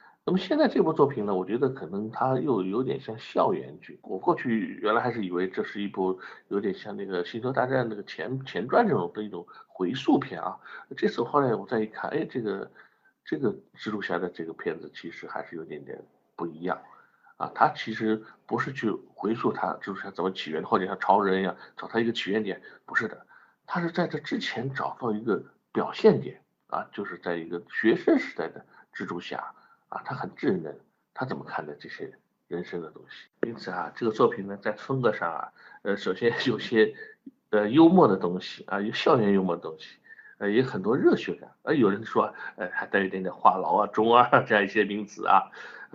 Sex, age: male, 60-79